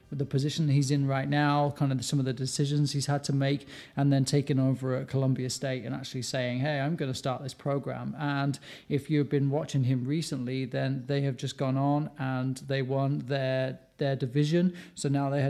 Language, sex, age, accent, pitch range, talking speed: English, male, 30-49, British, 130-145 Hz, 215 wpm